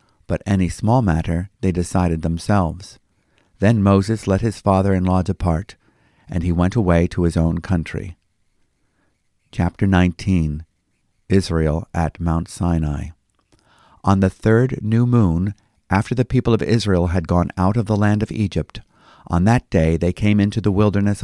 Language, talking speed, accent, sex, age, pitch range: English, 150 wpm, American, male, 50-69, 85-110 Hz